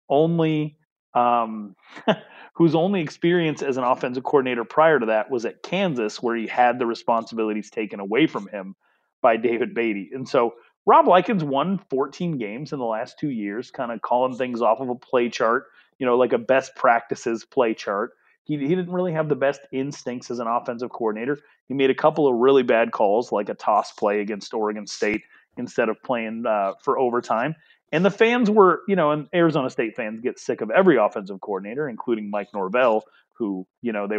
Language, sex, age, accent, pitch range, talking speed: English, male, 30-49, American, 110-150 Hz, 195 wpm